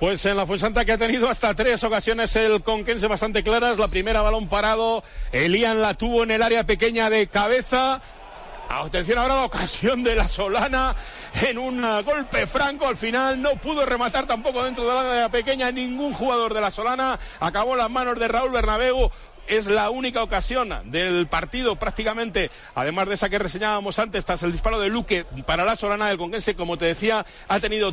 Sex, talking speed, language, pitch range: male, 190 wpm, Spanish, 195-235 Hz